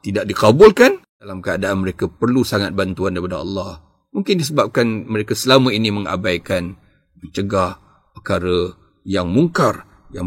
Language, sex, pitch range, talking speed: Malay, male, 90-110 Hz, 125 wpm